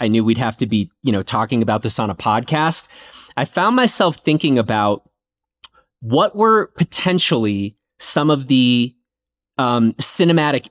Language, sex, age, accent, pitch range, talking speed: English, male, 30-49, American, 120-165 Hz, 150 wpm